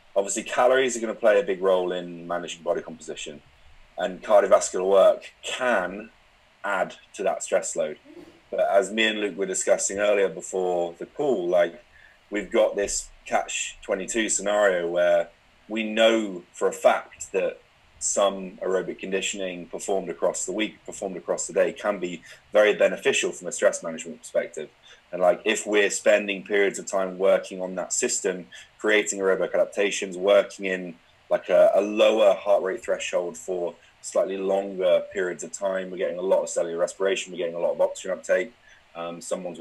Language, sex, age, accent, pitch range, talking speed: English, male, 30-49, British, 85-115 Hz, 170 wpm